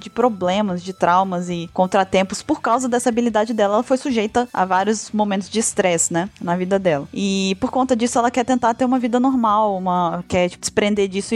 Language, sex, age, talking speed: Portuguese, female, 20-39, 205 wpm